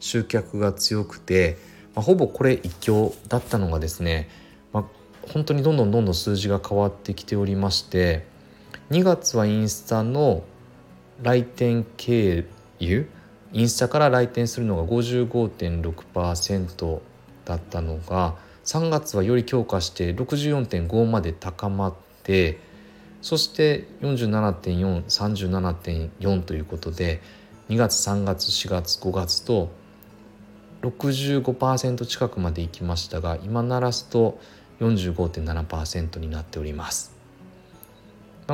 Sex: male